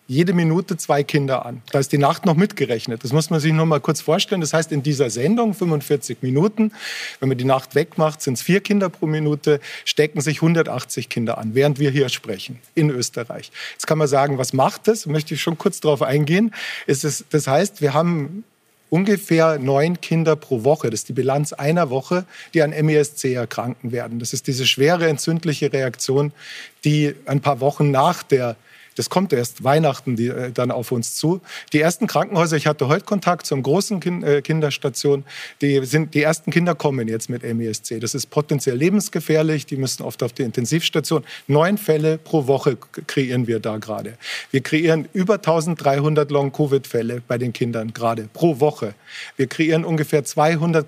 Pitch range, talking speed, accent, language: 130-165 Hz, 185 wpm, German, German